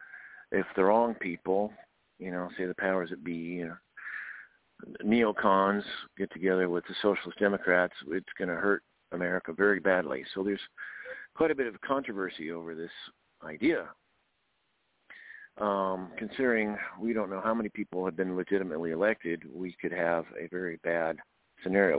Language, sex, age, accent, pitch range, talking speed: English, male, 50-69, American, 90-100 Hz, 145 wpm